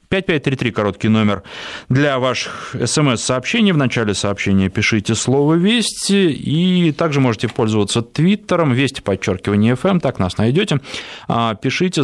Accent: native